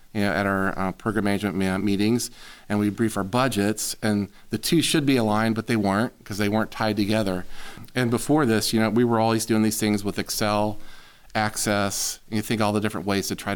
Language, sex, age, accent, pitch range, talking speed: English, male, 40-59, American, 100-110 Hz, 220 wpm